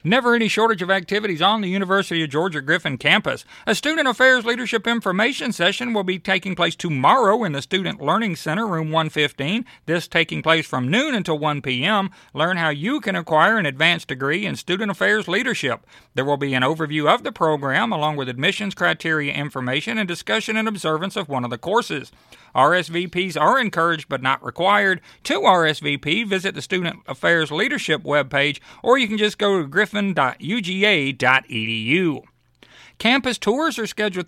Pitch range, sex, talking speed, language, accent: 150-210 Hz, male, 170 wpm, English, American